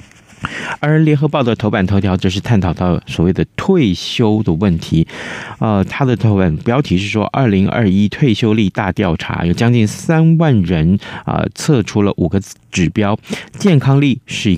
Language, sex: Chinese, male